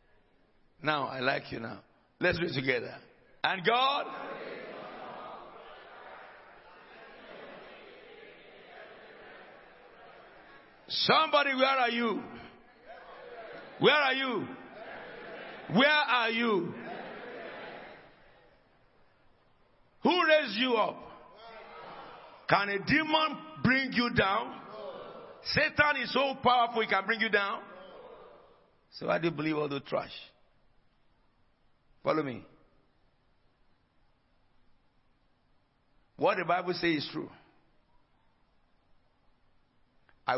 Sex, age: male, 60-79